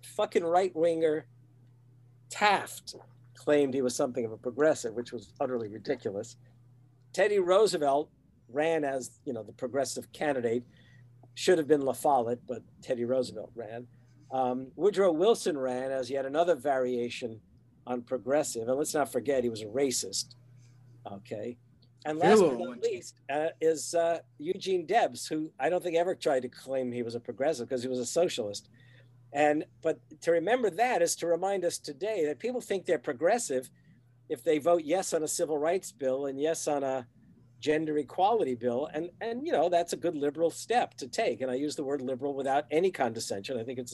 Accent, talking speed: American, 185 wpm